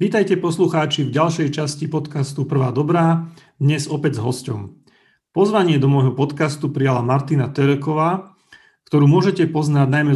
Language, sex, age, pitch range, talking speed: Slovak, male, 30-49, 130-160 Hz, 135 wpm